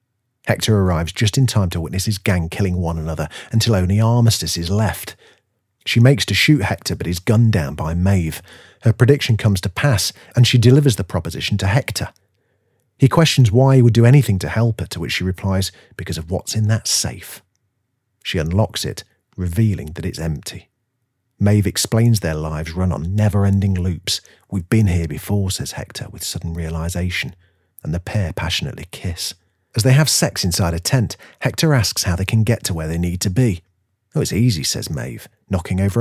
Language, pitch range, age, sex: English, 90-115 Hz, 40-59, male